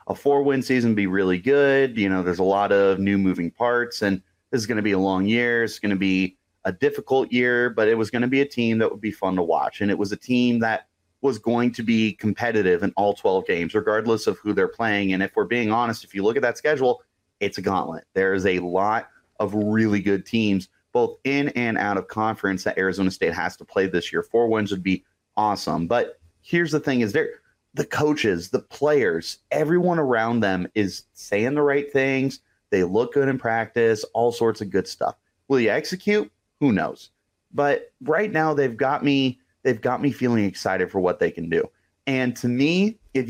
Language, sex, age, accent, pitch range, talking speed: English, male, 30-49, American, 95-125 Hz, 220 wpm